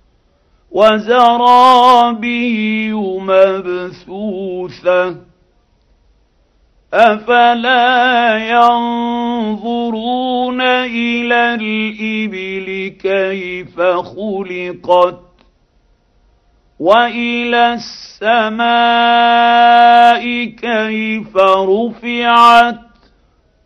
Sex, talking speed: male, 35 wpm